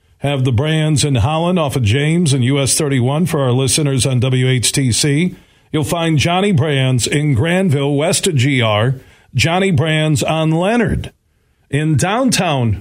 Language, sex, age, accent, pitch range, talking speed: English, male, 40-59, American, 115-155 Hz, 145 wpm